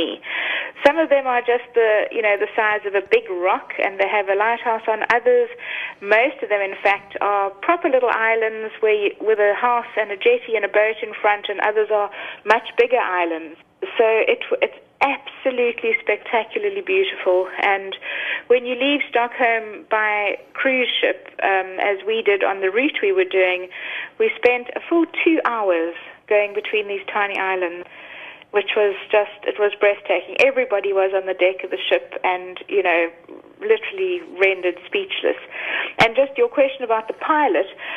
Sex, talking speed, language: female, 175 wpm, English